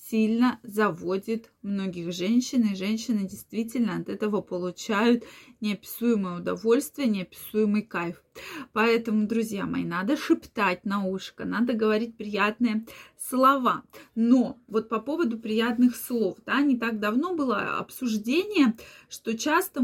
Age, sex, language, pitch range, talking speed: 20-39, female, Russian, 215-270 Hz, 120 wpm